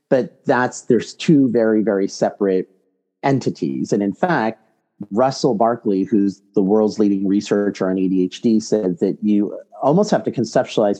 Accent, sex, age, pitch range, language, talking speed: American, male, 30-49, 100-120 Hz, English, 145 wpm